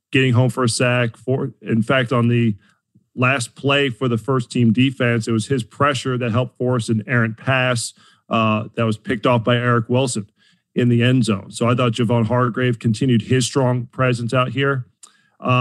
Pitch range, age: 120-140 Hz, 40-59